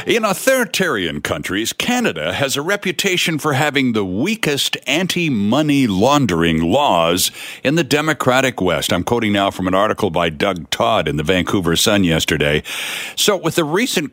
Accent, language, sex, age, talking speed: American, English, male, 60-79, 155 wpm